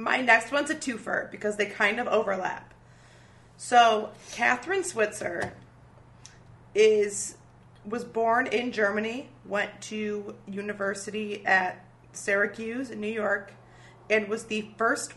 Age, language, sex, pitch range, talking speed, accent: 30-49, English, female, 200-235 Hz, 120 wpm, American